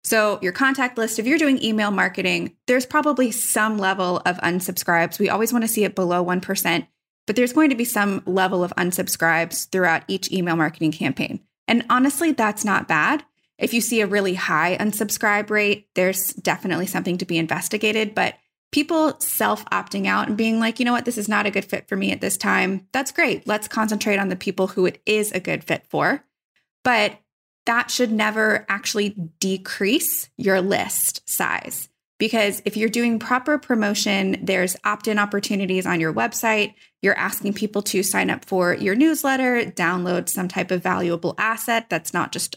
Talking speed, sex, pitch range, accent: 185 wpm, female, 185-235 Hz, American